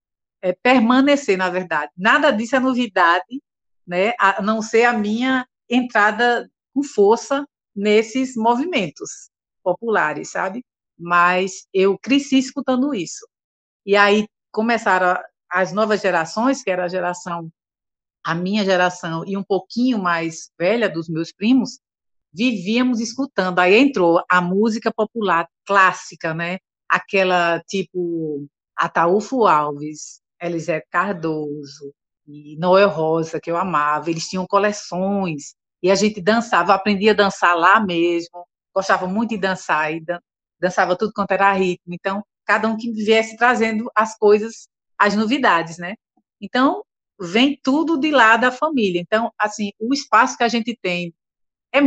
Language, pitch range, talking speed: Portuguese, 175-230 Hz, 135 wpm